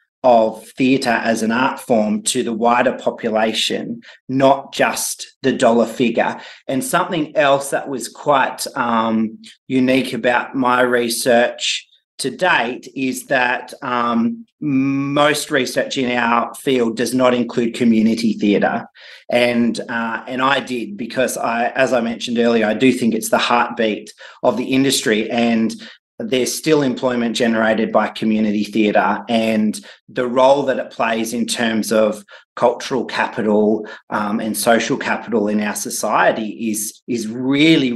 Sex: male